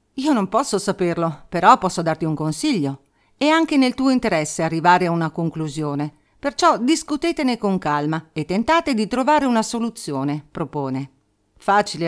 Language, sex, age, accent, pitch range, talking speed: Italian, female, 50-69, native, 155-250 Hz, 150 wpm